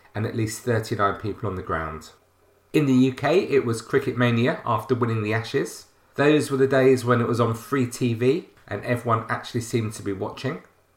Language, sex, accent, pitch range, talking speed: English, male, British, 100-130 Hz, 195 wpm